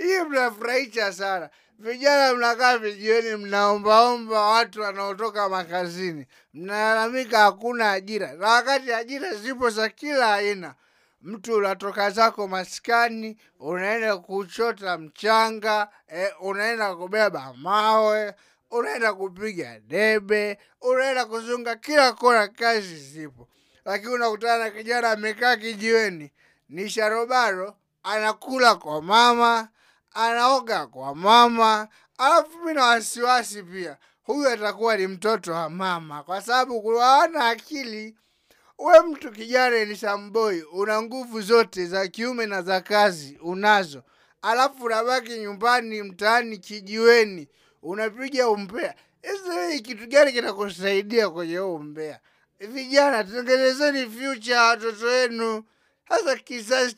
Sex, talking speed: male, 105 wpm